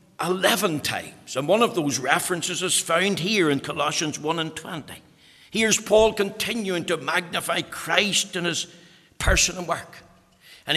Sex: male